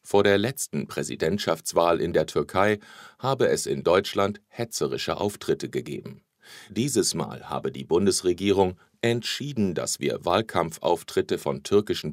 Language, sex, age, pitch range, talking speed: English, male, 40-59, 95-120 Hz, 125 wpm